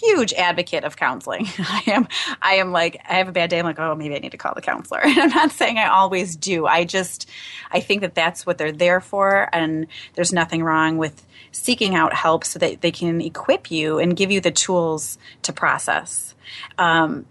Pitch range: 155-185 Hz